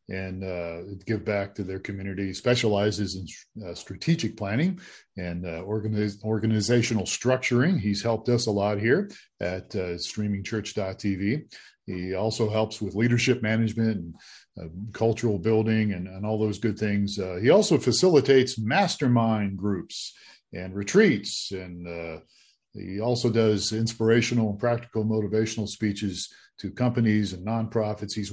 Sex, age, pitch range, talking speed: male, 40-59, 100-120 Hz, 135 wpm